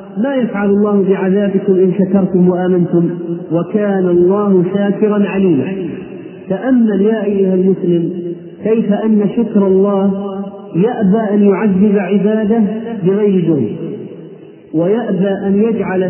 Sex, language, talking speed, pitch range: male, Arabic, 100 wpm, 190-225 Hz